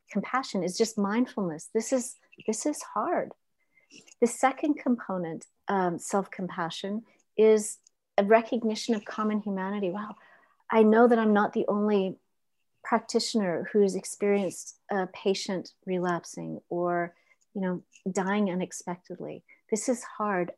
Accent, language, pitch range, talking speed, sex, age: American, English, 185-230 Hz, 130 wpm, female, 40-59